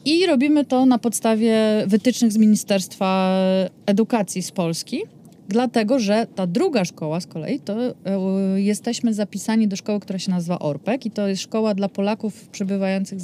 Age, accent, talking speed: 30-49, native, 160 wpm